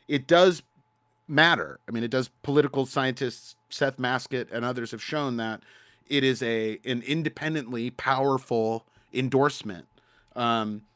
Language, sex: English, male